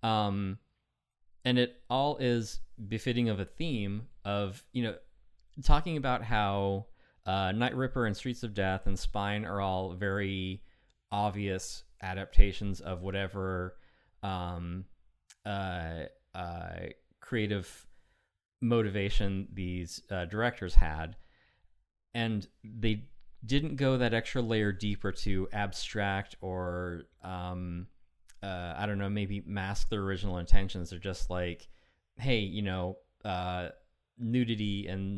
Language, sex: English, male